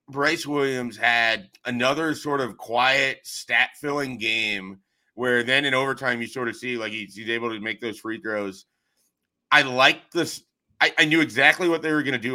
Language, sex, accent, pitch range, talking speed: English, male, American, 115-135 Hz, 195 wpm